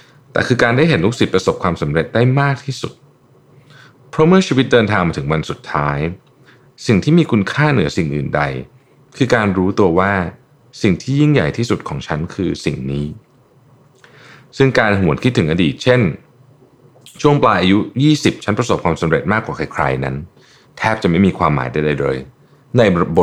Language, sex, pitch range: Thai, male, 90-135 Hz